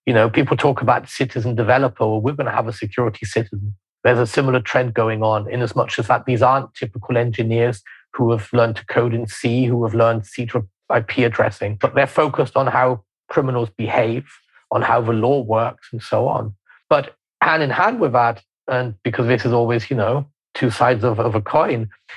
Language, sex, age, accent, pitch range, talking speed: English, male, 30-49, British, 110-125 Hz, 210 wpm